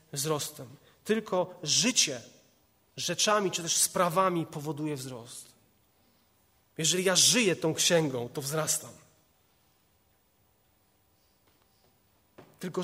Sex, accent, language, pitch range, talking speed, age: male, native, Polish, 125-195 Hz, 80 wpm, 30-49